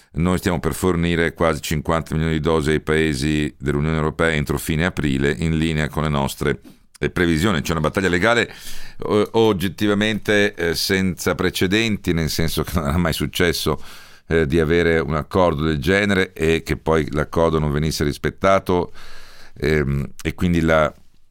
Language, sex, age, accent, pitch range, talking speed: Italian, male, 50-69, native, 80-95 Hz, 145 wpm